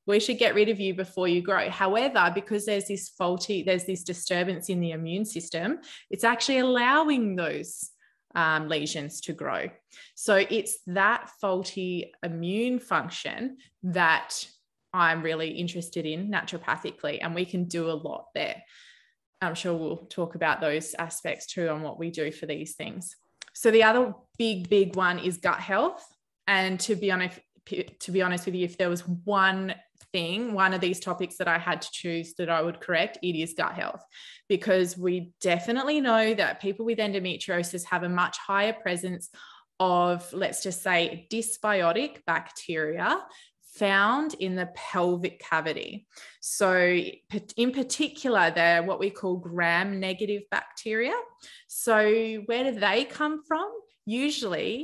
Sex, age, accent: female, 20-39, Australian